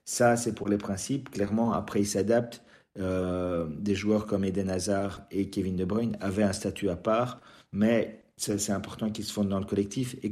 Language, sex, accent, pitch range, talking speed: French, male, French, 100-120 Hz, 205 wpm